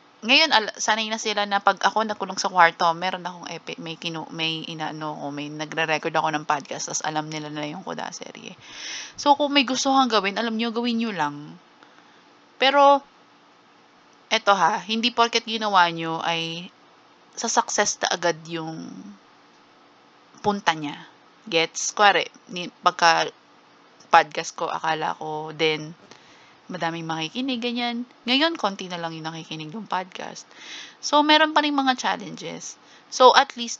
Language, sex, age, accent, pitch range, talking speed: English, female, 20-39, Filipino, 160-225 Hz, 140 wpm